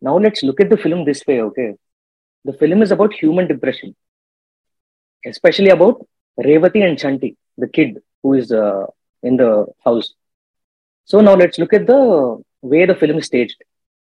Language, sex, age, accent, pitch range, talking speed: Telugu, female, 30-49, native, 135-200 Hz, 165 wpm